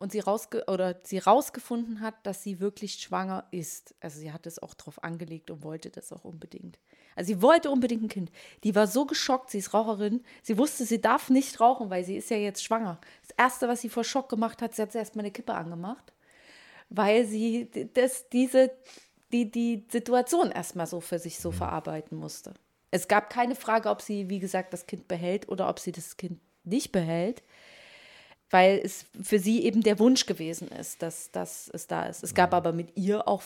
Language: German